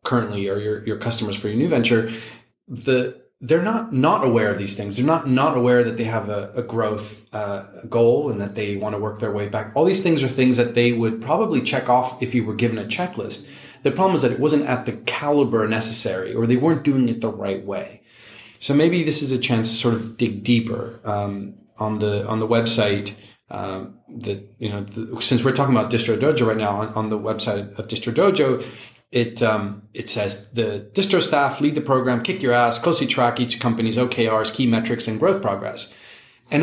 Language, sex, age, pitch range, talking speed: English, male, 30-49, 110-145 Hz, 220 wpm